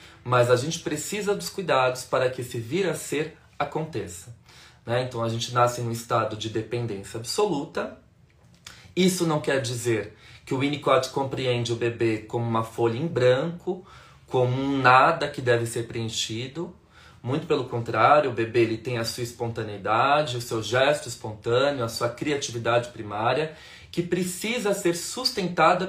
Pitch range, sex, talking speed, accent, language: 120-175 Hz, male, 160 wpm, Brazilian, Portuguese